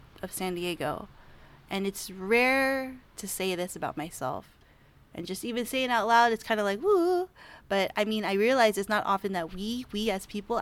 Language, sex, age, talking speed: English, female, 20-39, 205 wpm